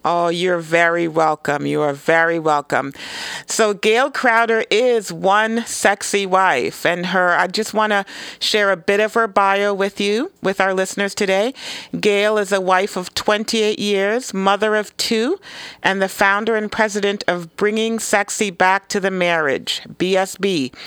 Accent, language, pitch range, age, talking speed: American, English, 180-220 Hz, 40-59, 160 wpm